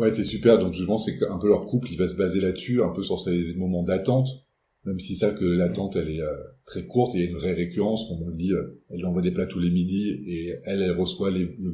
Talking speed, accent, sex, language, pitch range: 280 wpm, French, male, French, 90-110 Hz